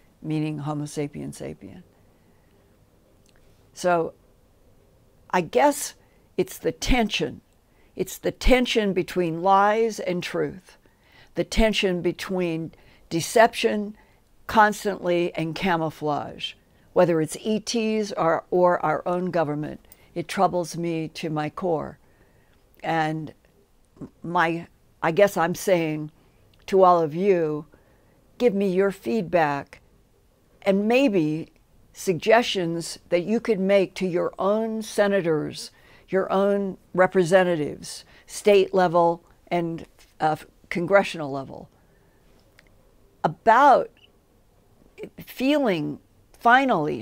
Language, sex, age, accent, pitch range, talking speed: English, female, 60-79, American, 160-205 Hz, 95 wpm